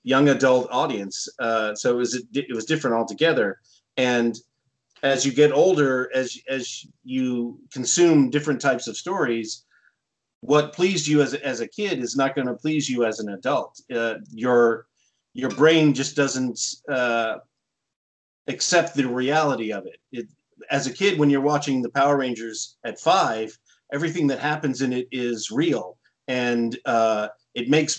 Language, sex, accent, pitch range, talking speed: English, male, American, 120-145 Hz, 165 wpm